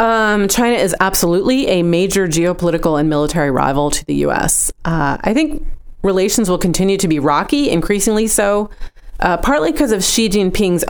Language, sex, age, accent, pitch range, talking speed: English, female, 30-49, American, 165-205 Hz, 165 wpm